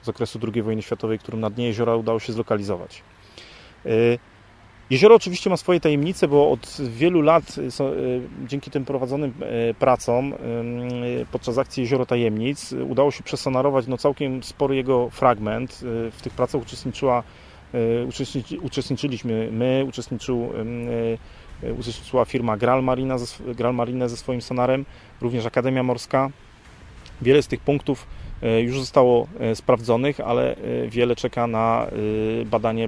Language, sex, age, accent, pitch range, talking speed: Polish, male, 30-49, native, 115-130 Hz, 125 wpm